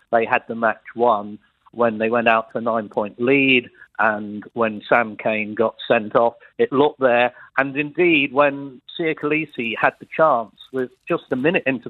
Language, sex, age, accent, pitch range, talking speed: English, male, 50-69, British, 120-140 Hz, 180 wpm